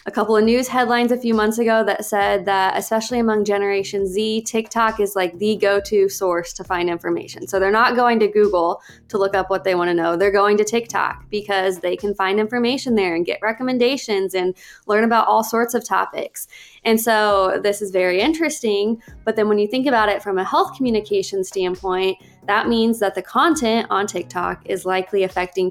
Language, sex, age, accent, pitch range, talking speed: English, female, 20-39, American, 185-225 Hz, 205 wpm